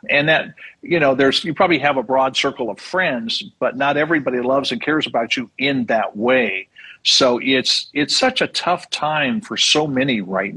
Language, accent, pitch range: English, American, 120-155 Hz